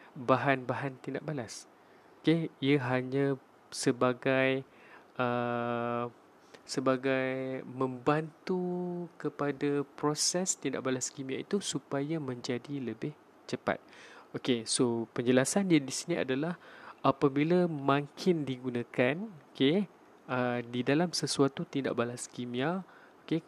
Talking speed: 100 wpm